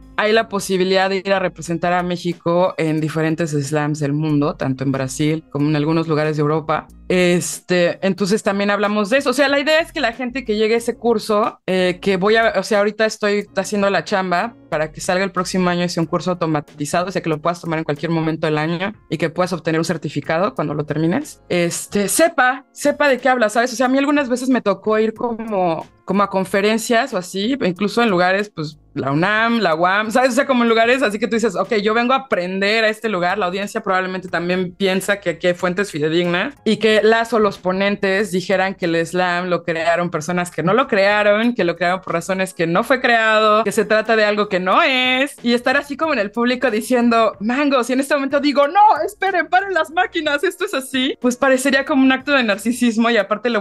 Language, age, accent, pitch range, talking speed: Spanish, 20-39, Mexican, 175-240 Hz, 235 wpm